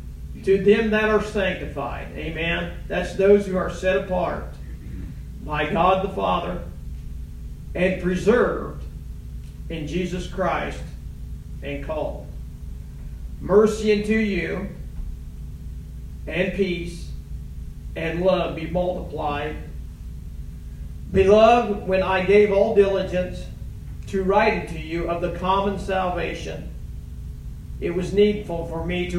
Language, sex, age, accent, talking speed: English, male, 50-69, American, 105 wpm